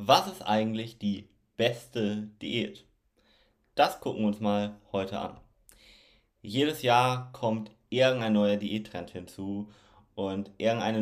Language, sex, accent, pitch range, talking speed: German, male, German, 105-120 Hz, 120 wpm